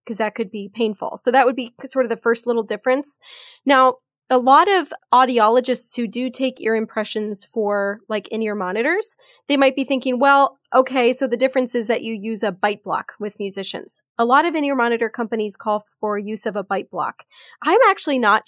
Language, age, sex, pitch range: English, 20-39, female, 215-265 Hz